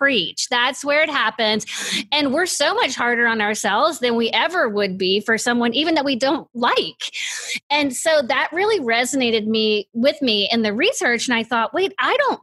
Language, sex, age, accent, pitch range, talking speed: English, female, 30-49, American, 220-275 Hz, 200 wpm